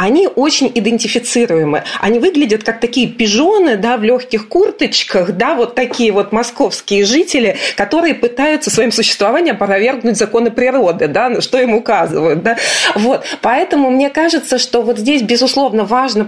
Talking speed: 145 wpm